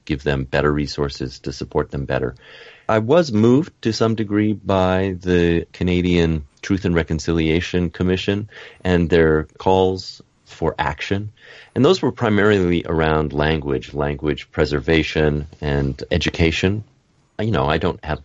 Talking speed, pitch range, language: 135 wpm, 75-95 Hz, English